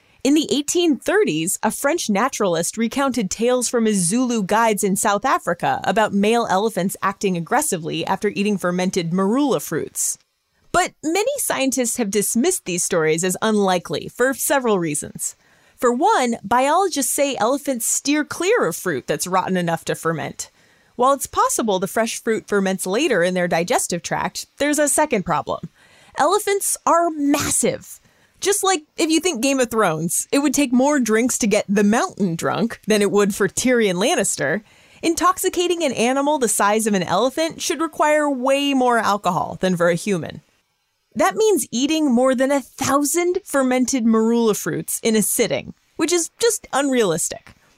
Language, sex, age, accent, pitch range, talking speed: English, female, 30-49, American, 200-295 Hz, 160 wpm